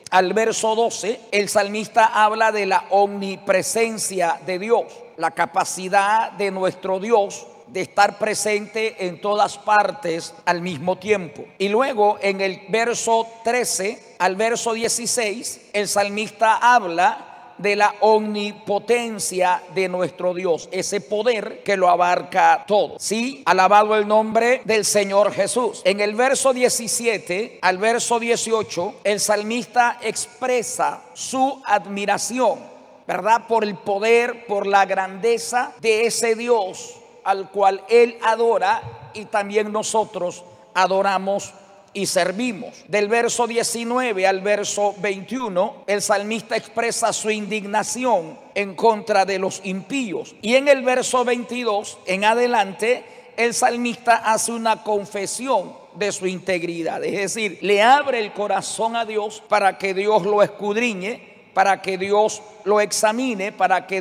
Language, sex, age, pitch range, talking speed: Spanish, male, 50-69, 195-230 Hz, 130 wpm